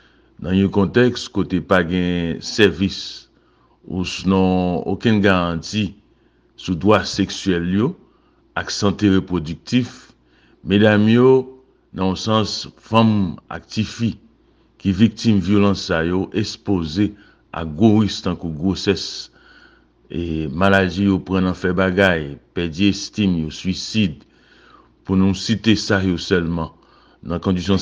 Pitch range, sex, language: 90-105 Hz, male, English